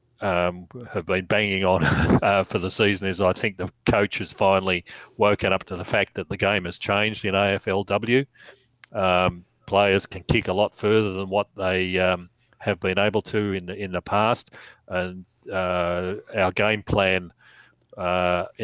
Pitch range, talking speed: 90-105 Hz, 175 wpm